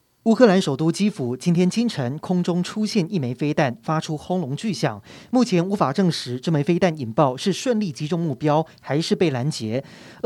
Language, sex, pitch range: Chinese, male, 145-200 Hz